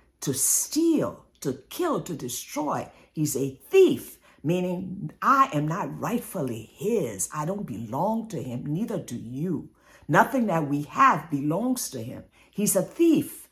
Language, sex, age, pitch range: English, female, 50-69, 175-280 Hz